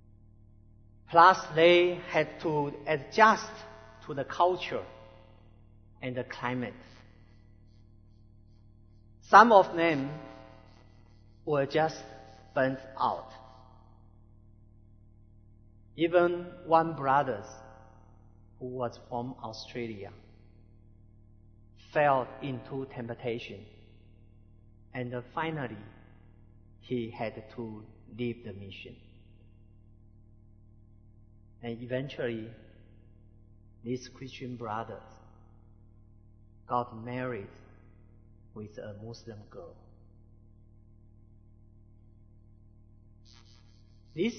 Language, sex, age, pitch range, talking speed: English, male, 50-69, 105-120 Hz, 65 wpm